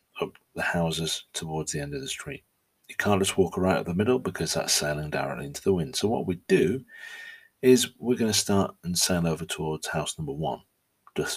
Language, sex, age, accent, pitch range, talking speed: English, male, 40-59, British, 80-95 Hz, 210 wpm